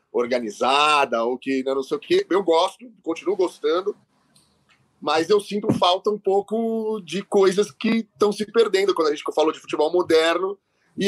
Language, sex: Portuguese, male